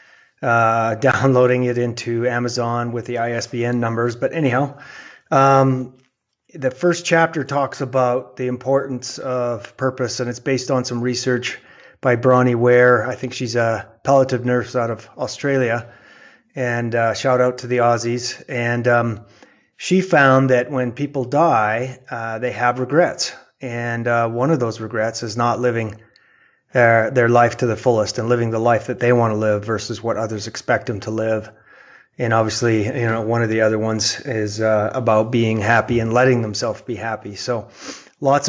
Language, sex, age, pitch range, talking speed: English, male, 30-49, 115-130 Hz, 170 wpm